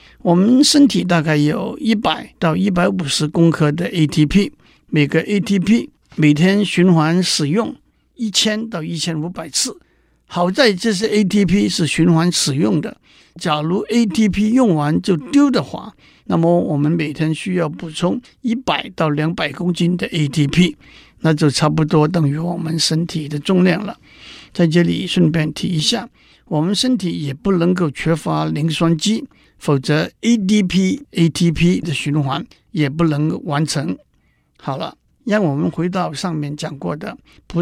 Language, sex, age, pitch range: Chinese, male, 60-79, 155-200 Hz